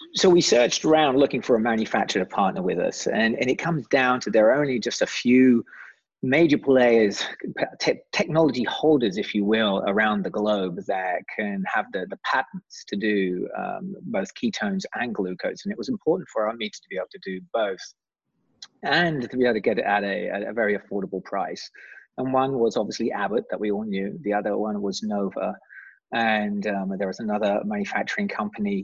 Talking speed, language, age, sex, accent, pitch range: 195 wpm, English, 30-49, male, British, 100-135 Hz